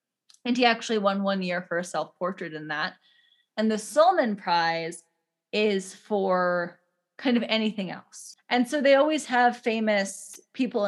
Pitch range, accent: 185-240 Hz, American